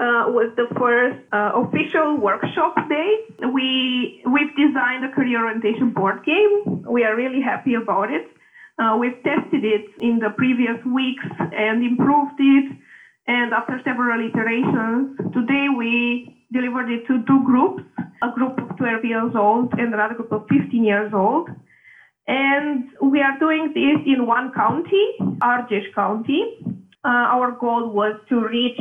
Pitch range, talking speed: 230-270 Hz, 150 wpm